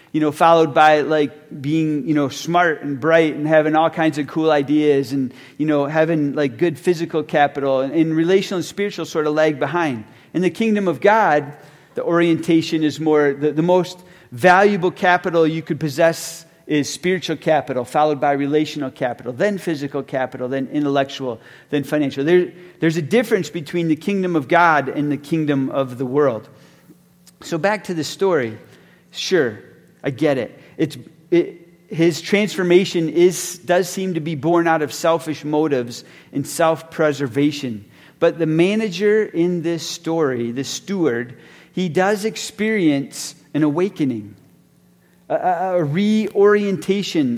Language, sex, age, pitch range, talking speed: English, male, 40-59, 145-175 Hz, 155 wpm